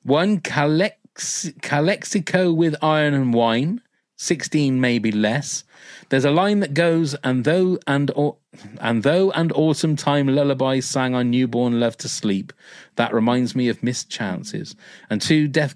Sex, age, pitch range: male, 30-49, 120-155 Hz